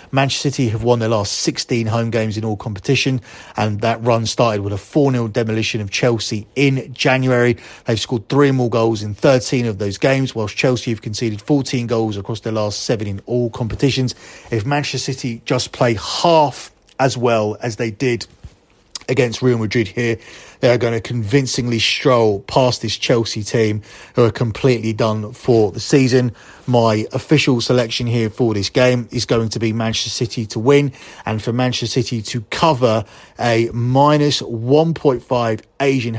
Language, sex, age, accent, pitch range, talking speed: English, male, 30-49, British, 115-130 Hz, 170 wpm